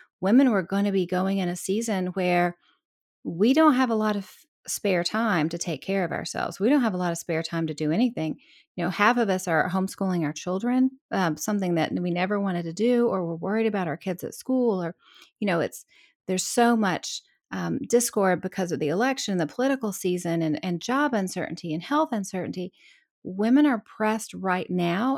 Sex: female